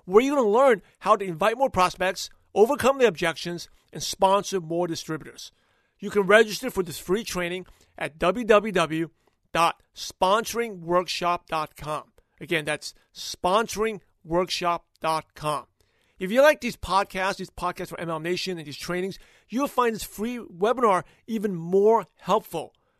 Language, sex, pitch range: English, male, 170-215 Hz